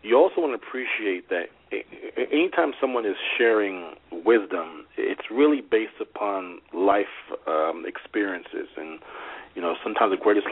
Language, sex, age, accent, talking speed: English, male, 40-59, American, 135 wpm